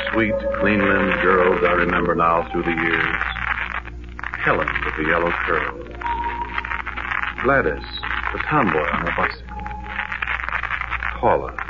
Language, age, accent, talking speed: English, 60-79, American, 110 wpm